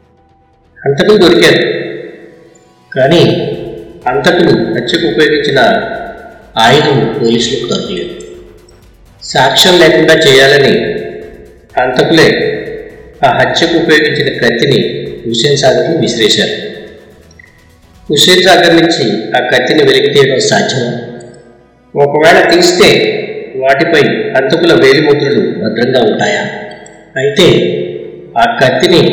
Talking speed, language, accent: 80 wpm, Telugu, native